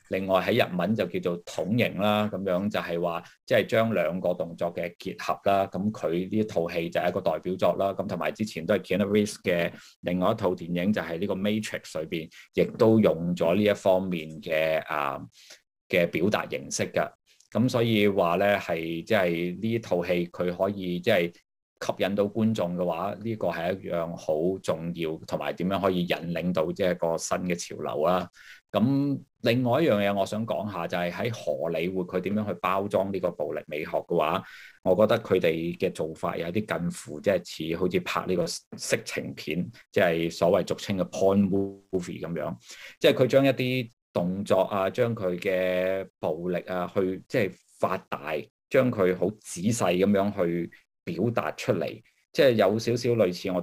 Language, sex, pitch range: Chinese, male, 85-105 Hz